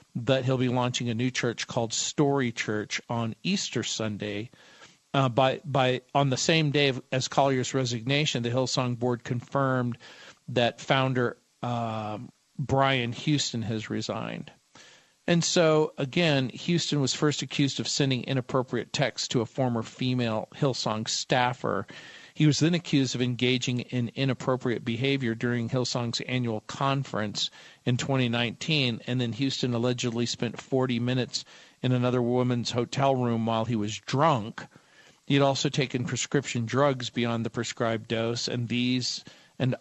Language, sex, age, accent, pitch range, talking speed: English, male, 50-69, American, 120-140 Hz, 145 wpm